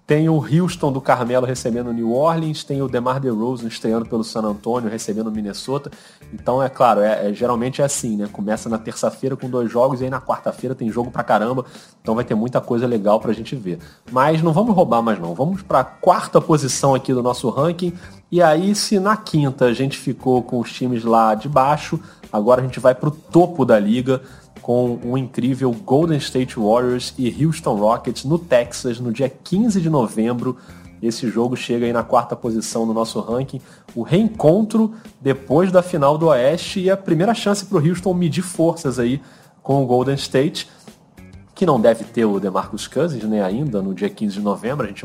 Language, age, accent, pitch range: Portuguese, 30-49, Brazilian, 115-155 Hz